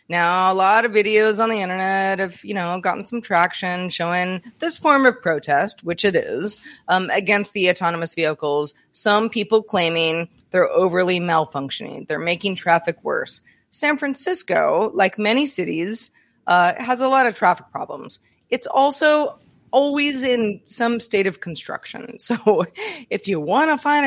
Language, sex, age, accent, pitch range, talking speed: English, female, 30-49, American, 170-235 Hz, 155 wpm